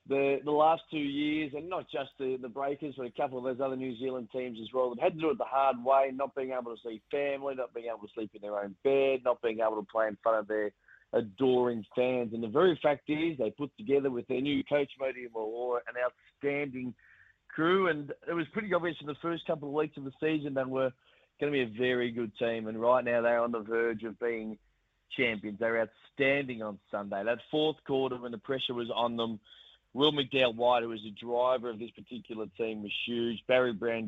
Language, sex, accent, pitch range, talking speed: English, male, Australian, 115-145 Hz, 230 wpm